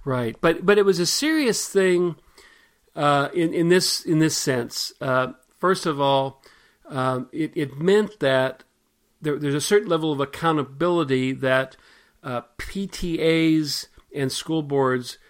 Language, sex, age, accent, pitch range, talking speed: English, male, 50-69, American, 130-165 Hz, 145 wpm